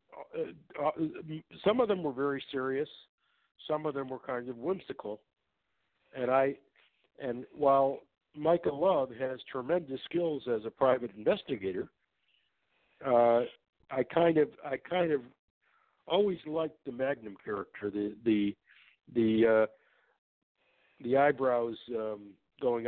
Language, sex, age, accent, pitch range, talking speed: English, male, 60-79, American, 115-150 Hz, 125 wpm